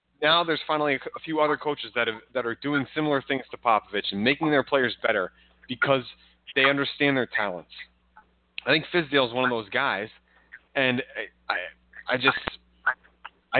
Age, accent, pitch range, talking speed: 30-49, American, 110-135 Hz, 175 wpm